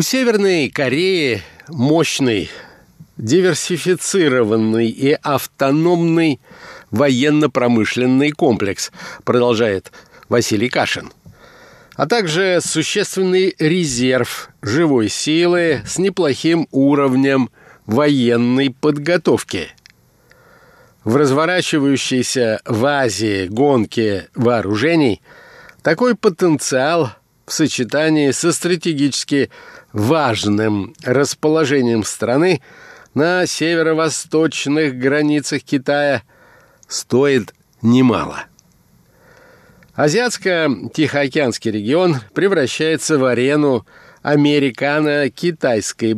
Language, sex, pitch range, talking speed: Russian, male, 125-165 Hz, 65 wpm